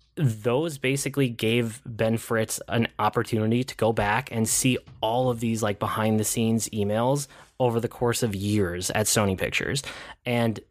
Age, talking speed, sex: 20-39, 150 wpm, male